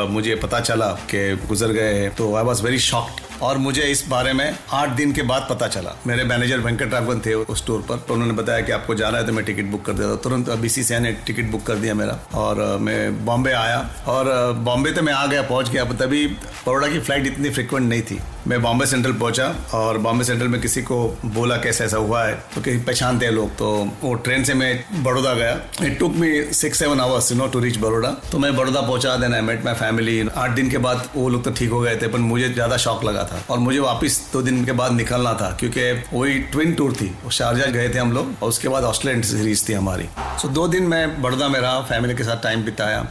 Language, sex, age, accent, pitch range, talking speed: Hindi, male, 40-59, native, 115-130 Hz, 240 wpm